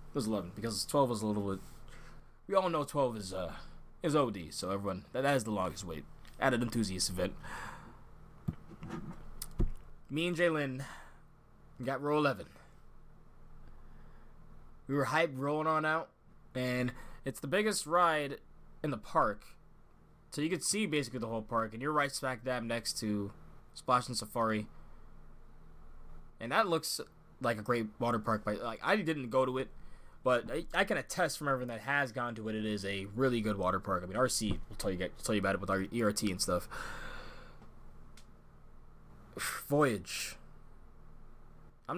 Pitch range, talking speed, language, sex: 110-150 Hz, 165 wpm, English, male